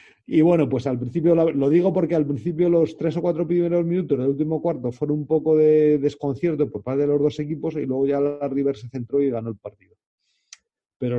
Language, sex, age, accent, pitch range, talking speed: Spanish, male, 40-59, Spanish, 125-160 Hz, 225 wpm